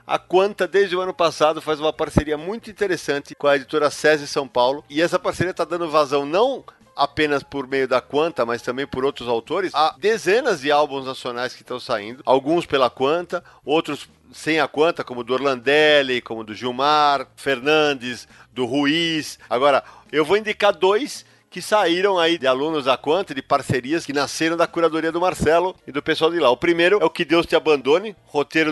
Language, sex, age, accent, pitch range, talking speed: Portuguese, male, 40-59, Brazilian, 135-175 Hz, 190 wpm